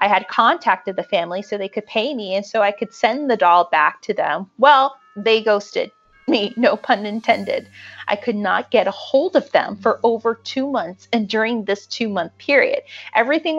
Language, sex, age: English, female, 30-49